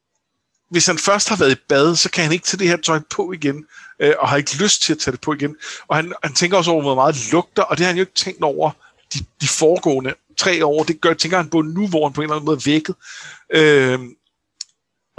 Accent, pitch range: native, 135-170 Hz